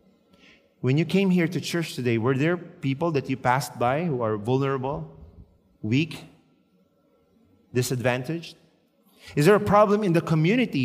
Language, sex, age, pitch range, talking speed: English, male, 30-49, 120-165 Hz, 145 wpm